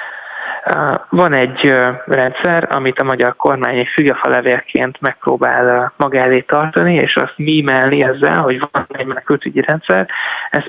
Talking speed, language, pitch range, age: 125 wpm, Hungarian, 130-150 Hz, 20-39